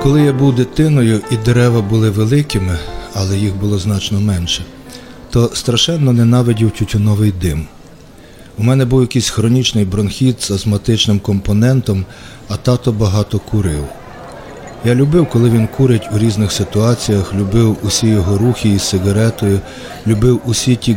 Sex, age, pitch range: male, 40-59, 100-125 Hz